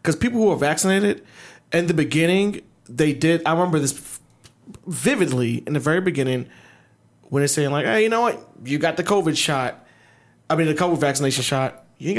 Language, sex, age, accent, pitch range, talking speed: English, male, 20-39, American, 135-175 Hz, 195 wpm